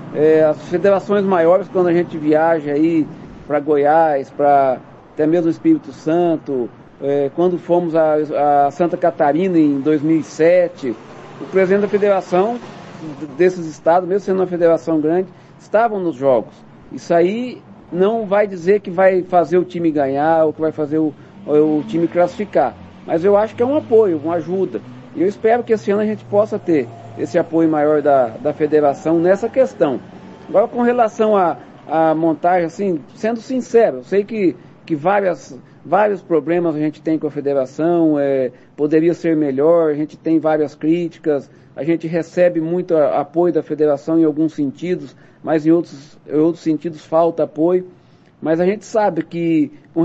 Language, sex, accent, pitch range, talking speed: Portuguese, male, Brazilian, 150-185 Hz, 165 wpm